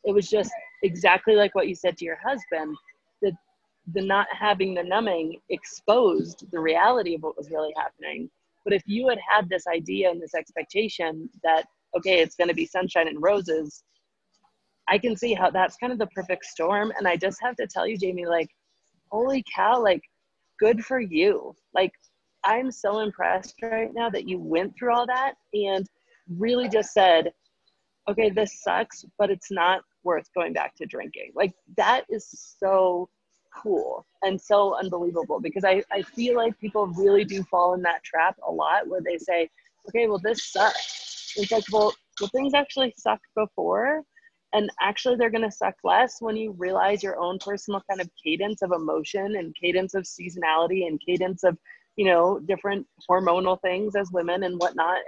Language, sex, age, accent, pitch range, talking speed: English, female, 30-49, American, 180-220 Hz, 180 wpm